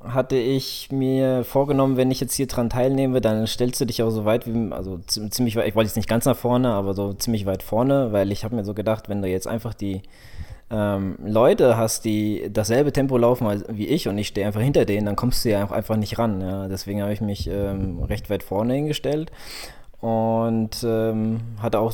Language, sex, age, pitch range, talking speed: German, male, 20-39, 105-120 Hz, 220 wpm